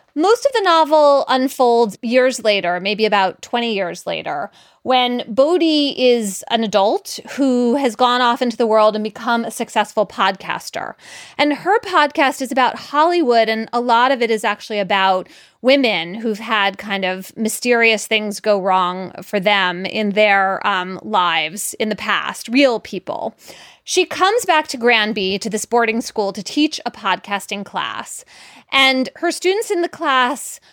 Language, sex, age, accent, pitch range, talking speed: English, female, 30-49, American, 205-270 Hz, 160 wpm